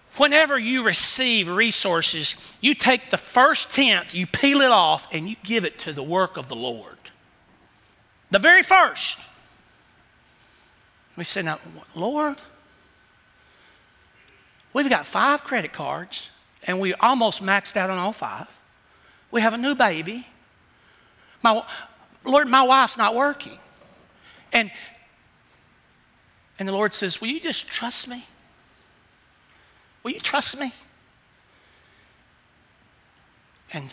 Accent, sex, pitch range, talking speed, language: American, male, 175-260 Hz, 120 wpm, English